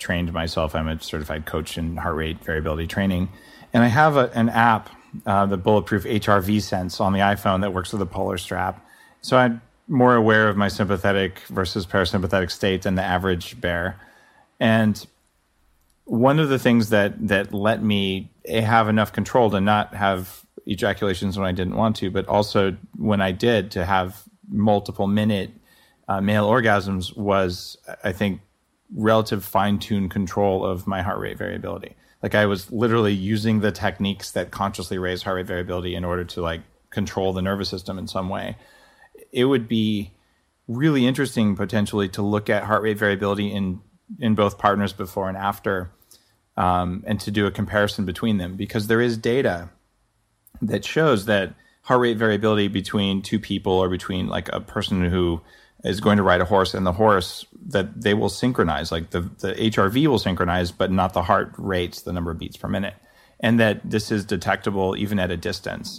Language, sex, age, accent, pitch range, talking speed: English, male, 30-49, American, 95-110 Hz, 180 wpm